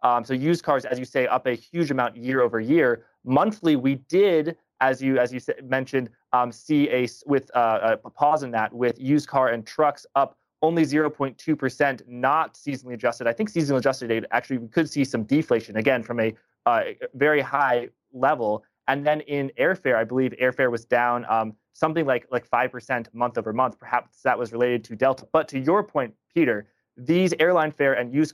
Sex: male